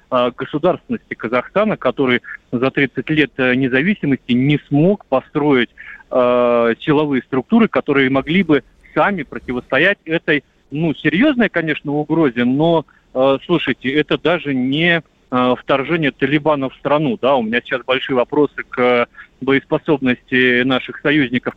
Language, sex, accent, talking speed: Russian, male, native, 120 wpm